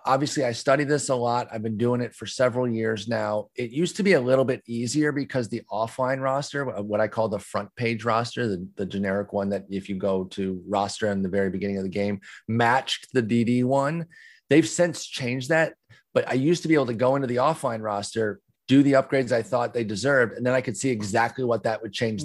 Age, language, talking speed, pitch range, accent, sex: 30-49, English, 235 wpm, 110-145 Hz, American, male